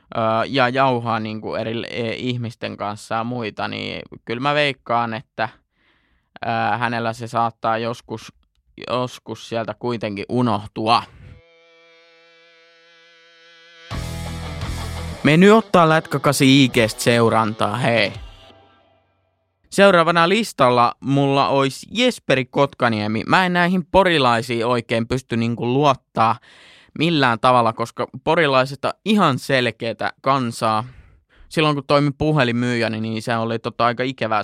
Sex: male